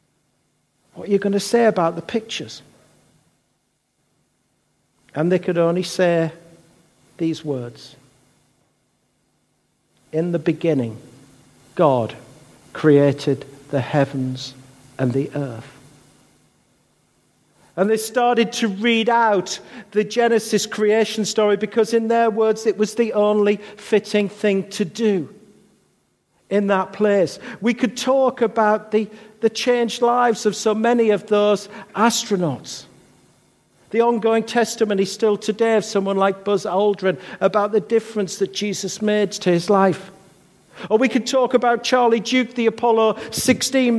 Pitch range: 185-230 Hz